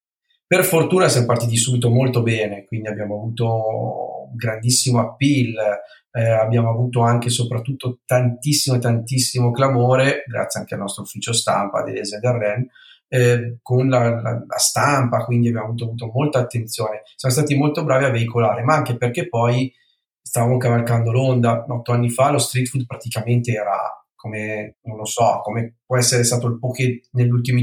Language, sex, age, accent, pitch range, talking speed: Italian, male, 40-59, native, 115-130 Hz, 160 wpm